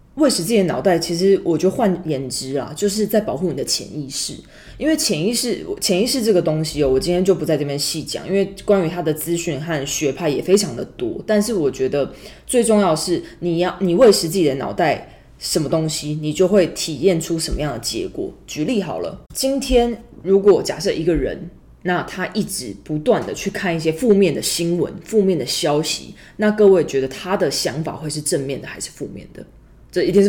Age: 20-39